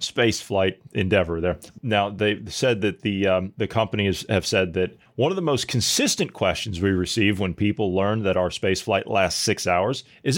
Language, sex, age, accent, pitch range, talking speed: English, male, 40-59, American, 95-120 Hz, 185 wpm